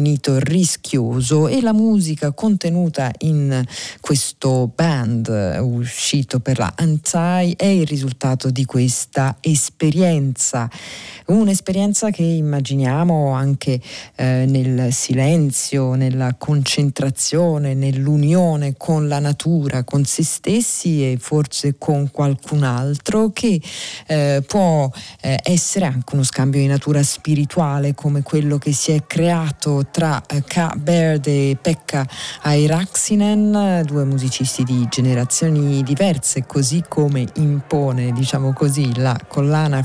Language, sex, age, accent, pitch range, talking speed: Italian, female, 40-59, native, 135-165 Hz, 110 wpm